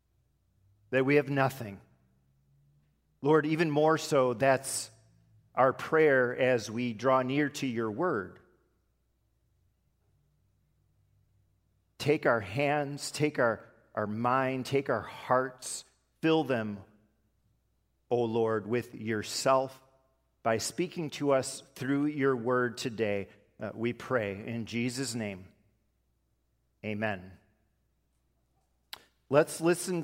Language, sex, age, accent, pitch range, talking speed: English, male, 40-59, American, 110-155 Hz, 100 wpm